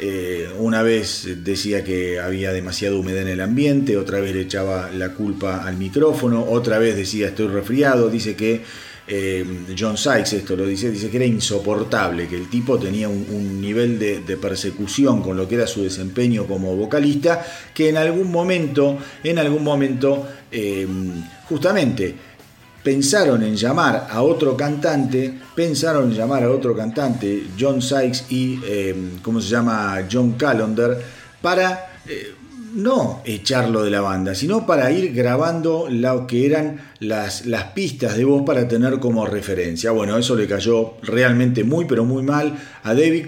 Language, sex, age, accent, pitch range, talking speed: Spanish, male, 40-59, Argentinian, 100-135 Hz, 160 wpm